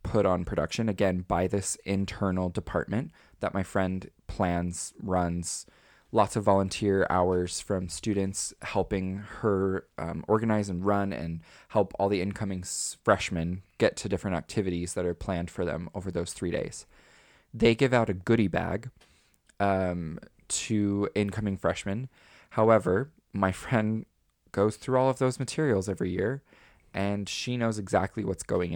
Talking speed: 150 wpm